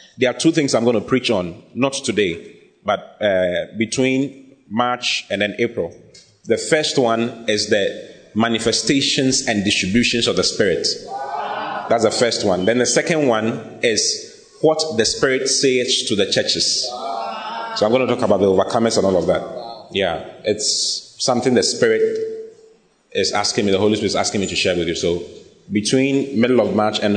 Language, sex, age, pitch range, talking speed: English, male, 30-49, 95-135 Hz, 180 wpm